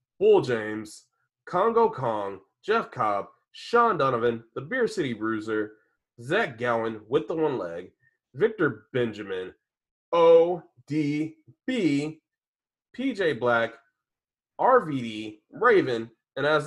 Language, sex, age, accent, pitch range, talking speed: English, male, 30-49, American, 120-175 Hz, 95 wpm